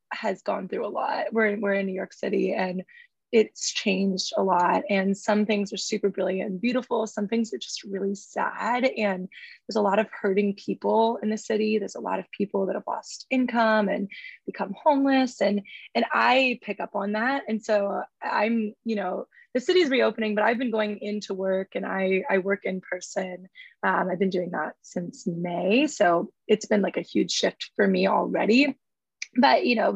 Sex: female